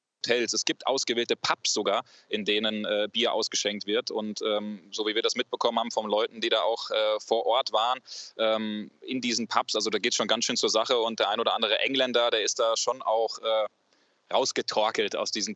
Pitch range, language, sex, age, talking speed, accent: 105-125 Hz, German, male, 20-39, 215 wpm, German